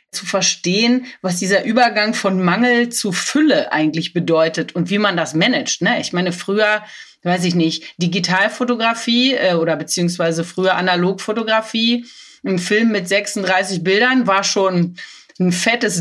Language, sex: German, female